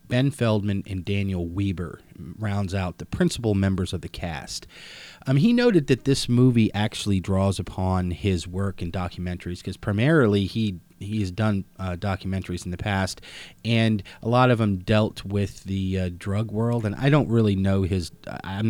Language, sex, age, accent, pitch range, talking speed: English, male, 30-49, American, 95-115 Hz, 175 wpm